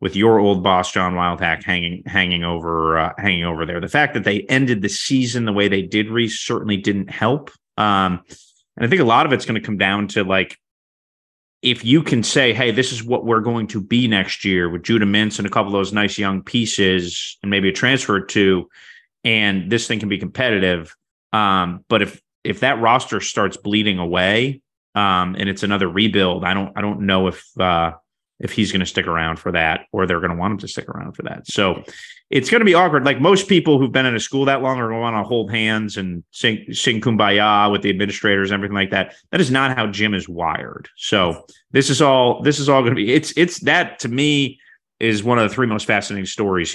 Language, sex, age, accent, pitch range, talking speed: English, male, 30-49, American, 95-120 Hz, 235 wpm